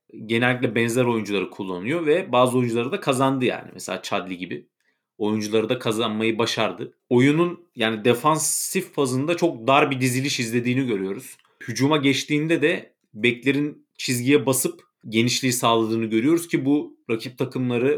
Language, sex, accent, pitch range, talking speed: Turkish, male, native, 110-135 Hz, 135 wpm